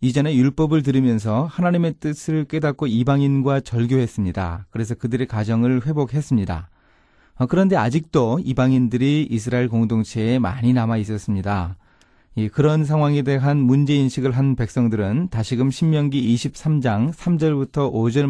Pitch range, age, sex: 110-150 Hz, 30-49, male